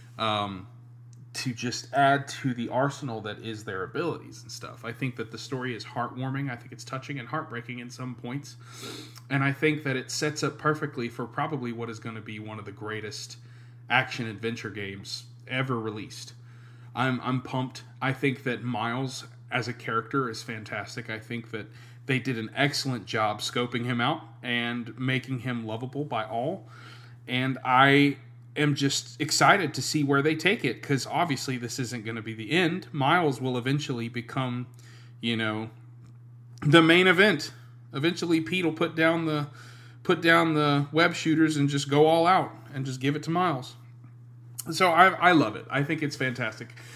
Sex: male